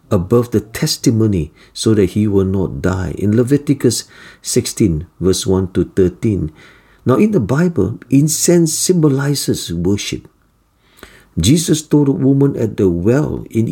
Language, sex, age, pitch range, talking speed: English, male, 50-69, 100-140 Hz, 135 wpm